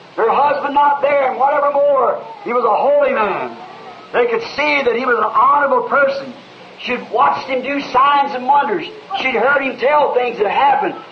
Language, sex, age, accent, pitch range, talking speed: English, male, 50-69, American, 240-290 Hz, 190 wpm